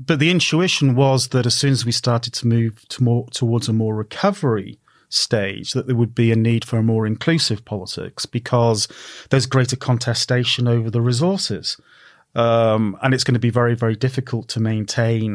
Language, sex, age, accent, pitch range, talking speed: English, male, 40-59, British, 110-130 Hz, 180 wpm